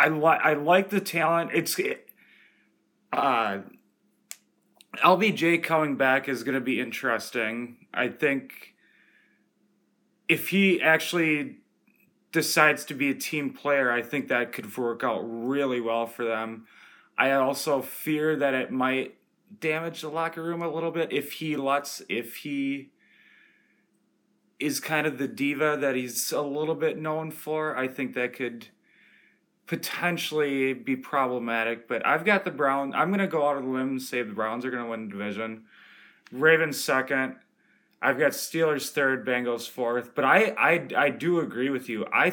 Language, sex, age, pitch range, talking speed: English, male, 30-49, 125-165 Hz, 160 wpm